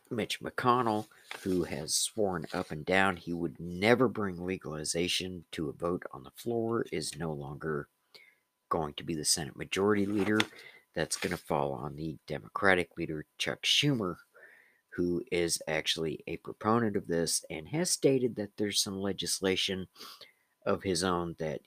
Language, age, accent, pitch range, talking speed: English, 50-69, American, 80-105 Hz, 160 wpm